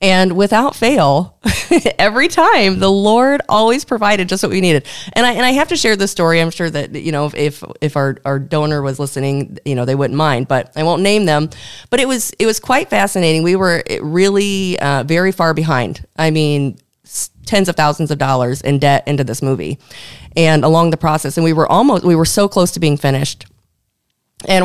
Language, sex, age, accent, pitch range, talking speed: English, female, 30-49, American, 145-195 Hz, 210 wpm